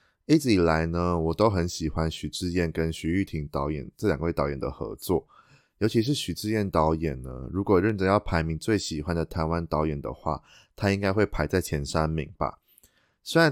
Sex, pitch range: male, 80-100 Hz